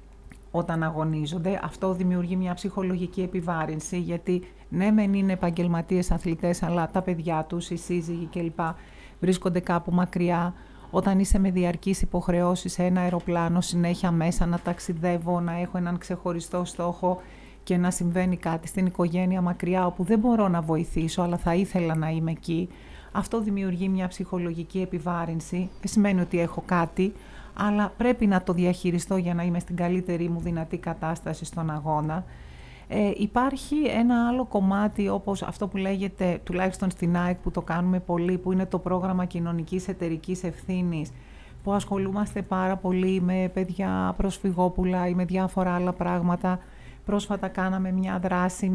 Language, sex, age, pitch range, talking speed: Greek, female, 30-49, 175-190 Hz, 150 wpm